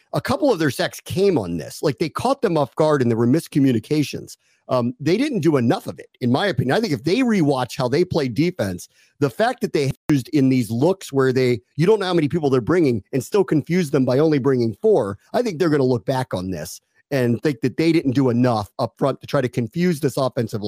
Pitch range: 125-165 Hz